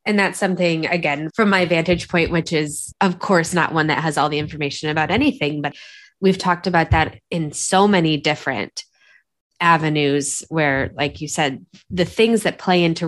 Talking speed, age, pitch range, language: 185 wpm, 20-39, 155-185 Hz, English